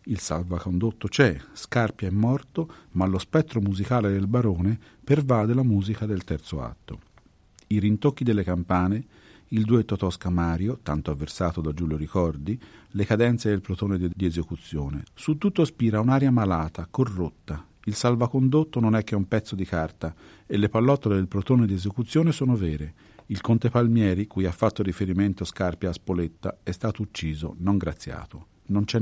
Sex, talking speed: male, 165 wpm